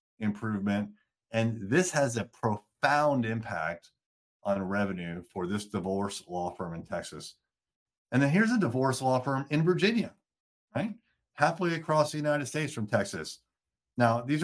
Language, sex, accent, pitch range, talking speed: English, male, American, 105-140 Hz, 145 wpm